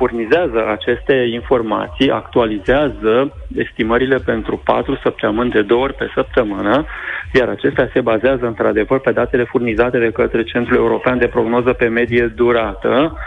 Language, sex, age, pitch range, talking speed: Romanian, male, 30-49, 120-140 Hz, 135 wpm